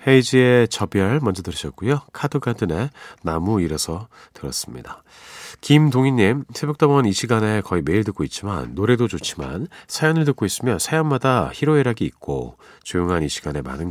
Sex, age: male, 40-59